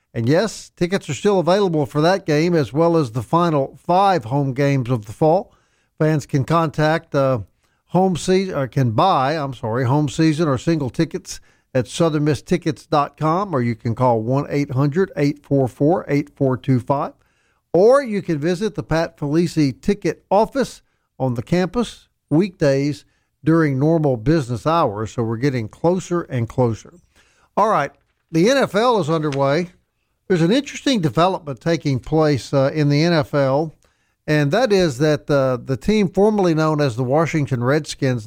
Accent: American